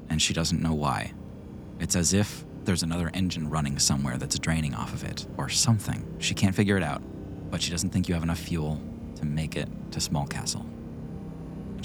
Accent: American